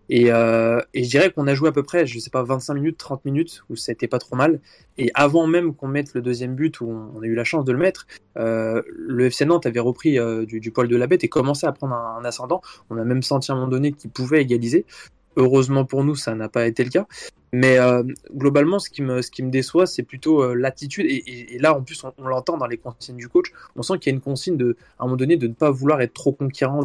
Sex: male